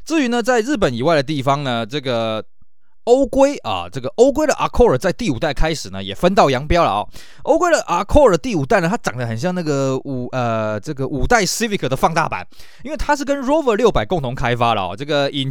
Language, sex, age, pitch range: Chinese, male, 20-39, 130-195 Hz